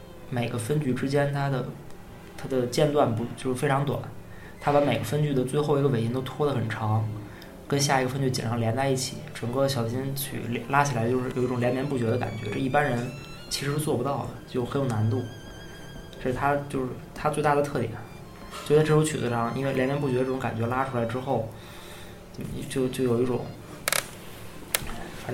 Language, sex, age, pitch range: Chinese, male, 20-39, 120-145 Hz